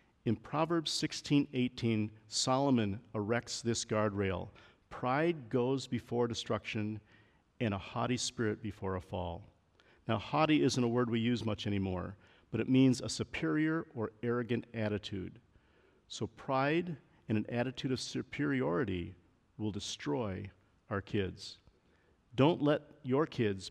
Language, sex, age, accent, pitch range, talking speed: English, male, 50-69, American, 100-130 Hz, 130 wpm